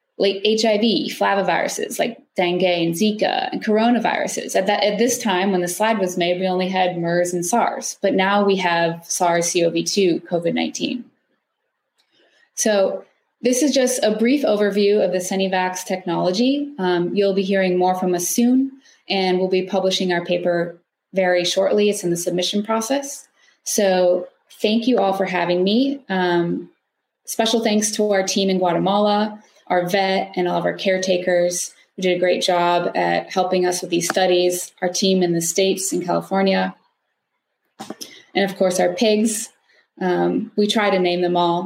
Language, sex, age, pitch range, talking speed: English, female, 20-39, 180-210 Hz, 165 wpm